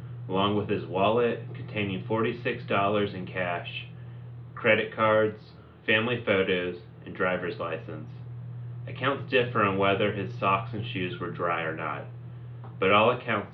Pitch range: 100-125 Hz